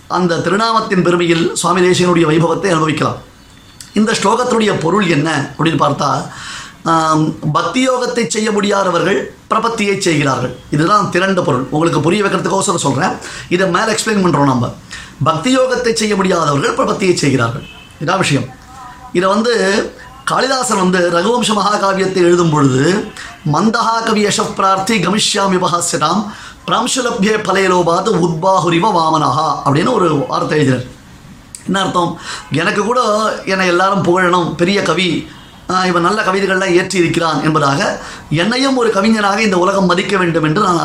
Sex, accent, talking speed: male, native, 115 wpm